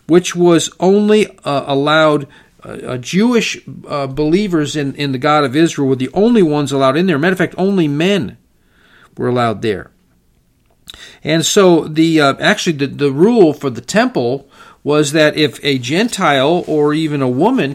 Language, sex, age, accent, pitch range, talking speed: English, male, 50-69, American, 135-180 Hz, 170 wpm